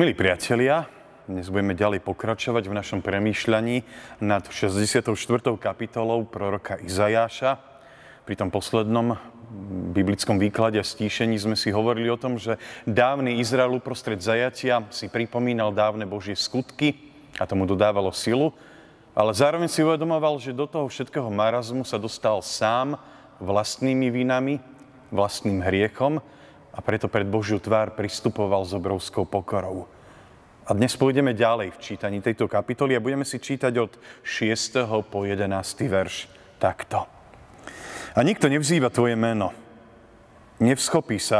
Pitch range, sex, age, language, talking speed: 105-130 Hz, male, 30-49, Slovak, 130 wpm